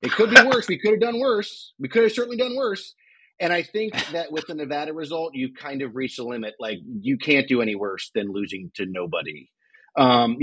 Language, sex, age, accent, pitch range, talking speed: English, male, 30-49, American, 130-165 Hz, 230 wpm